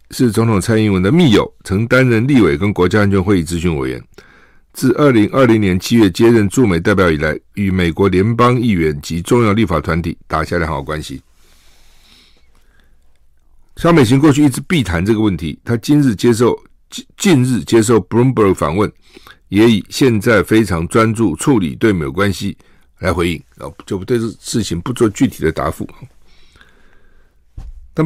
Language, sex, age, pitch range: Chinese, male, 60-79, 70-110 Hz